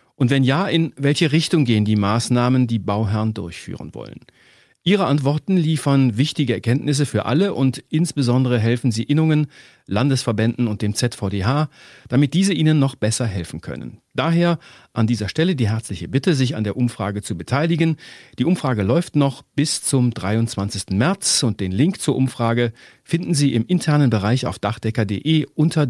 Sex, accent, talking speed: male, German, 160 wpm